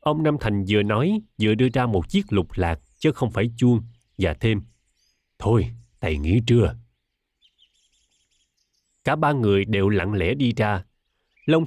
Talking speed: 160 wpm